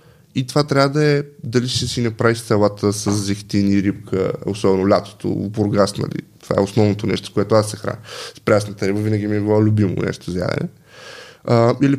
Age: 20-39